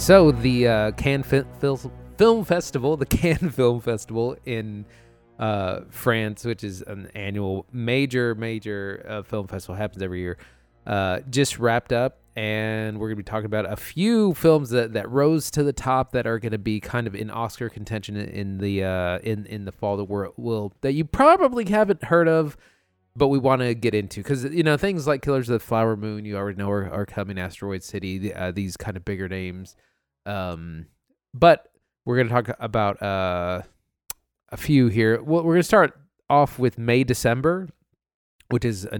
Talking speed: 190 wpm